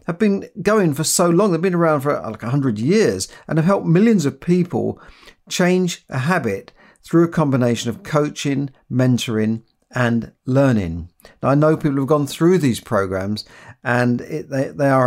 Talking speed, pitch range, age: 165 wpm, 125-165 Hz, 50-69